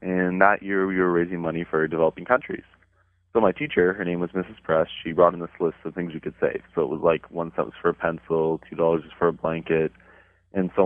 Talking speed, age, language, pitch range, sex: 255 wpm, 20-39, English, 85-95 Hz, male